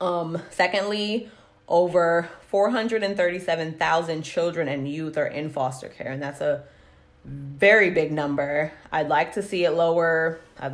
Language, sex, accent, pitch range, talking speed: English, female, American, 150-175 Hz, 135 wpm